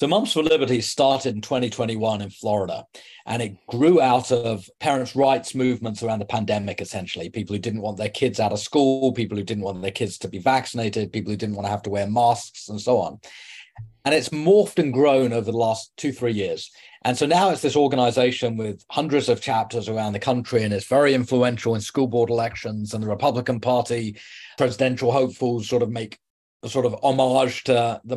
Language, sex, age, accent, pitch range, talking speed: English, male, 40-59, British, 110-135 Hz, 210 wpm